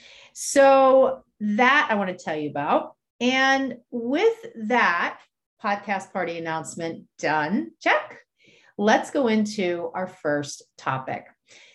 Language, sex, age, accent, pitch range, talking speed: English, female, 40-59, American, 165-225 Hz, 110 wpm